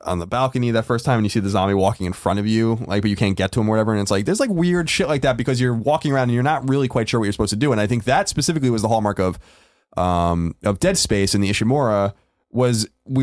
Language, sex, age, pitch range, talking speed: English, male, 20-39, 95-125 Hz, 305 wpm